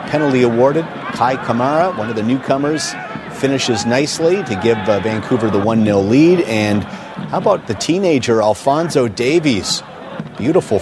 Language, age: English, 40-59